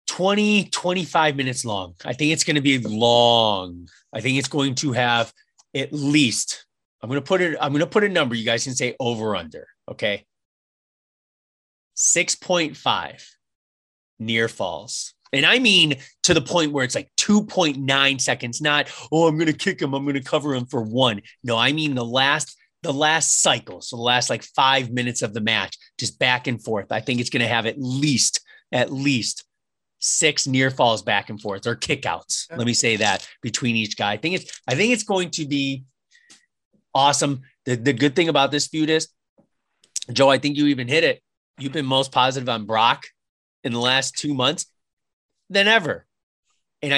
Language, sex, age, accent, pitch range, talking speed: English, male, 30-49, American, 120-150 Hz, 190 wpm